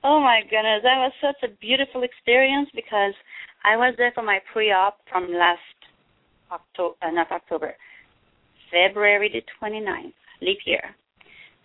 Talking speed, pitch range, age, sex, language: 135 wpm, 195-290 Hz, 30-49, female, English